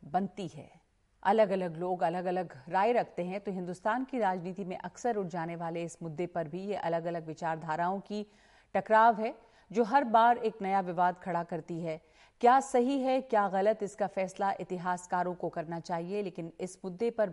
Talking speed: 185 wpm